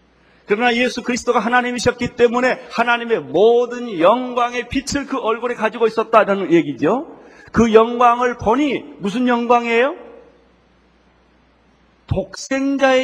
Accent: native